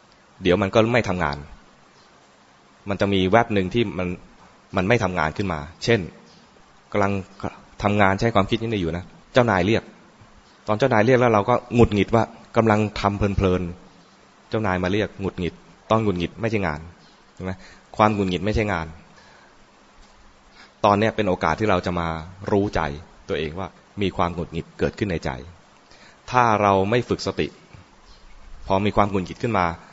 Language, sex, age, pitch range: English, male, 20-39, 85-105 Hz